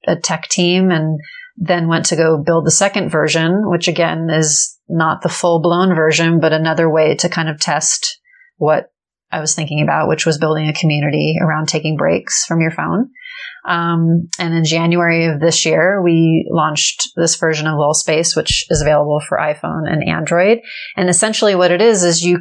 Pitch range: 165-185 Hz